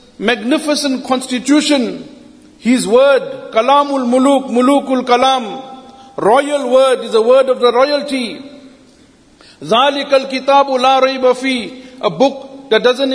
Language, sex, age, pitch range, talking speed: English, male, 50-69, 245-275 Hz, 115 wpm